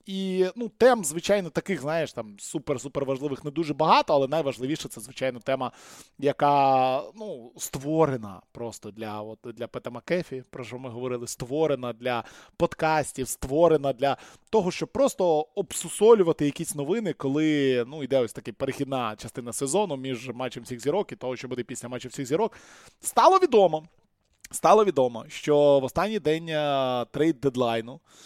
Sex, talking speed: male, 145 wpm